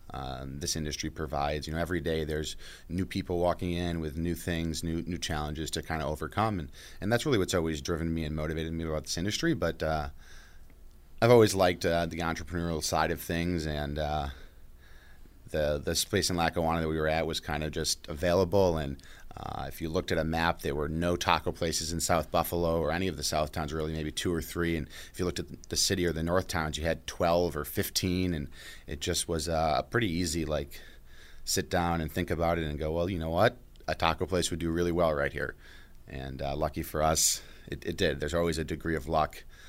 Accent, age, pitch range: American, 30-49, 75-85 Hz